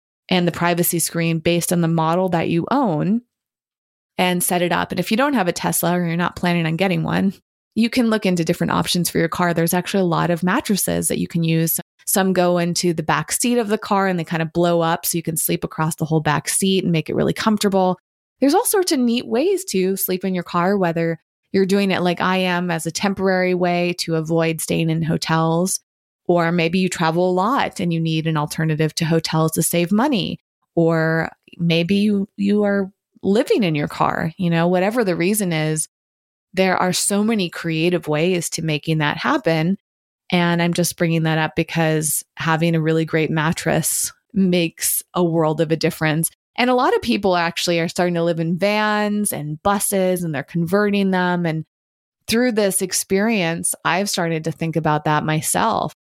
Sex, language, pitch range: female, English, 165-190 Hz